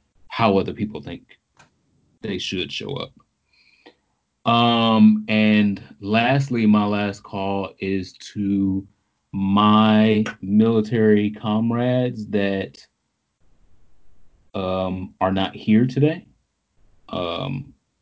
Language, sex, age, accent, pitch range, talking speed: English, male, 30-49, American, 95-110 Hz, 85 wpm